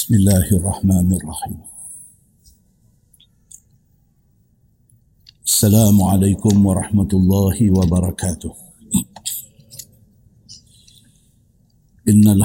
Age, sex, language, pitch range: 50-69, male, Malay, 95-110 Hz